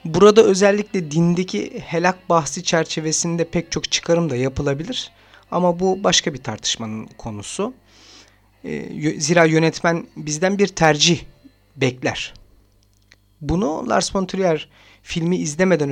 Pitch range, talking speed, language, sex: 110-170 Hz, 110 wpm, Turkish, male